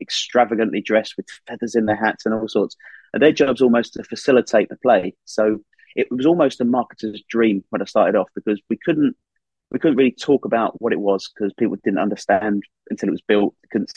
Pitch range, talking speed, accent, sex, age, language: 105-125 Hz, 210 wpm, British, male, 30-49, English